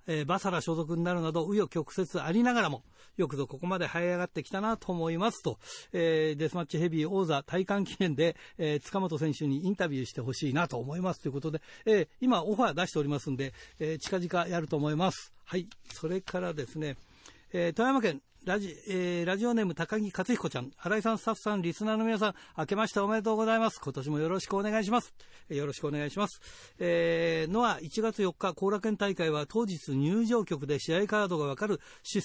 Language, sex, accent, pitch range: Japanese, male, native, 150-200 Hz